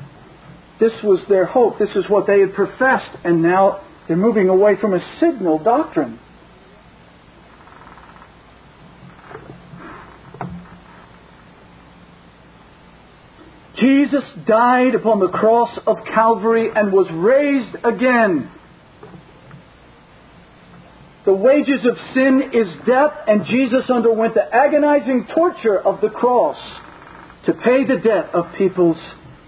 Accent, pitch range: American, 175-235 Hz